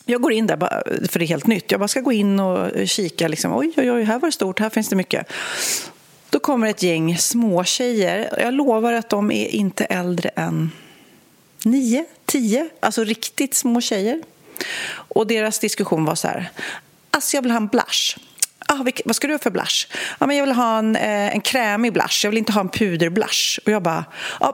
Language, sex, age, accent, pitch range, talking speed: Swedish, female, 40-59, native, 185-275 Hz, 215 wpm